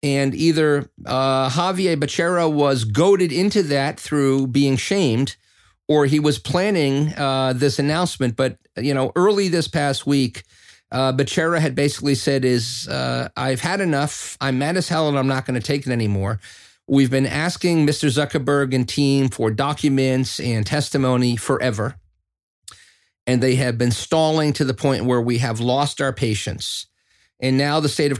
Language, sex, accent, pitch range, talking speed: English, male, American, 120-150 Hz, 170 wpm